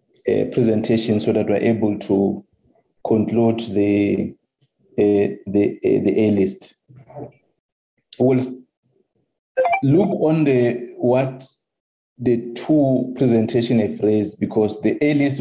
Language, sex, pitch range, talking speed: English, male, 105-125 Hz, 100 wpm